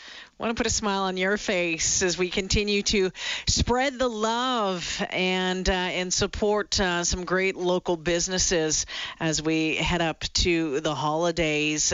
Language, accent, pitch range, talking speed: English, American, 175-200 Hz, 160 wpm